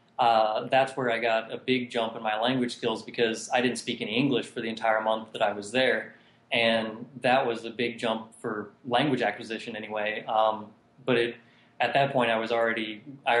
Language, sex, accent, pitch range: English, male, American, 115-125 Hz